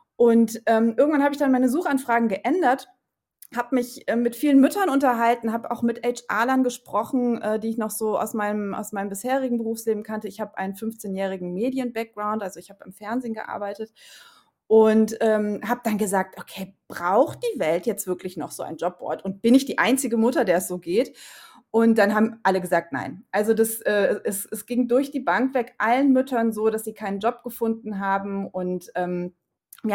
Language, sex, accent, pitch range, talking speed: German, female, German, 200-240 Hz, 195 wpm